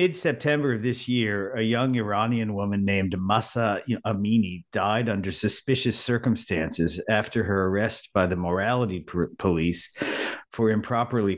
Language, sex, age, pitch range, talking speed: English, male, 50-69, 85-110 Hz, 125 wpm